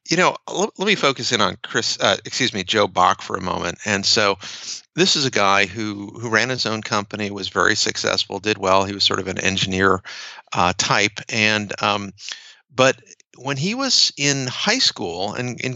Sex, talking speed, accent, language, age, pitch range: male, 200 wpm, American, English, 50-69, 105-135 Hz